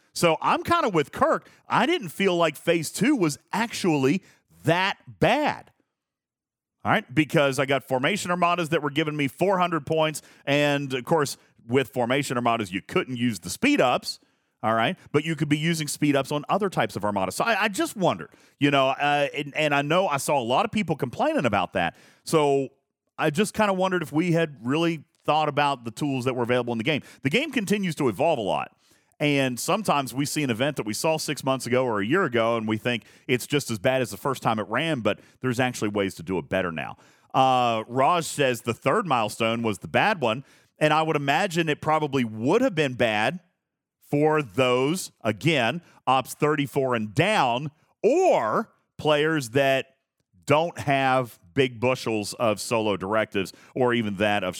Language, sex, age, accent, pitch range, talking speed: English, male, 40-59, American, 125-160 Hz, 200 wpm